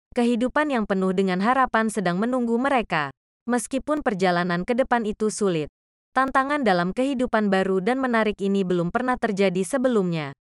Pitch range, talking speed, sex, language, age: 190-250 Hz, 140 wpm, female, English, 20-39